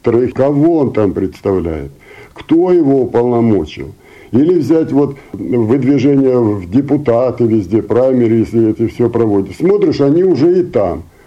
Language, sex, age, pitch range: Russian, male, 60-79, 105-135 Hz